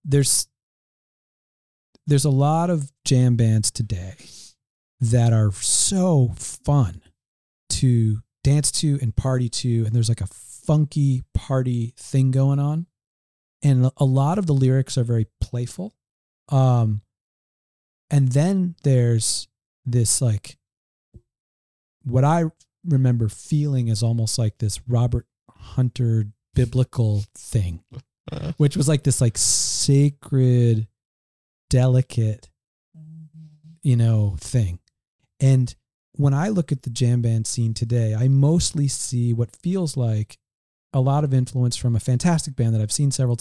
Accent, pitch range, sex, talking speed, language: American, 110-135 Hz, male, 125 wpm, English